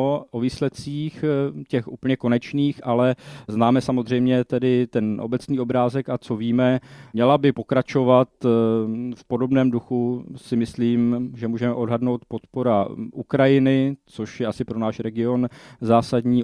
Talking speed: 130 wpm